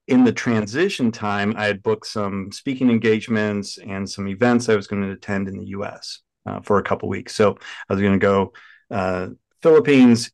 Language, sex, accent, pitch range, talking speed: English, male, American, 100-120 Hz, 205 wpm